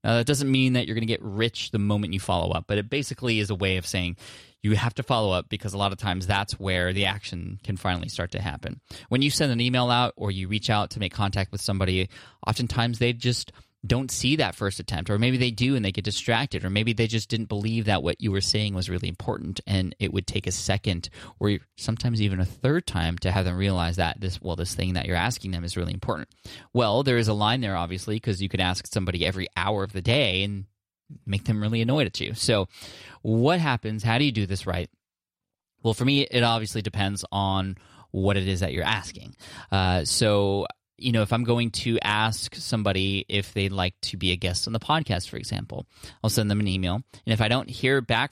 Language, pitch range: English, 95-115 Hz